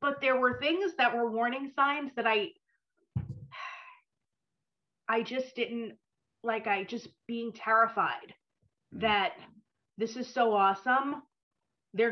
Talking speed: 120 wpm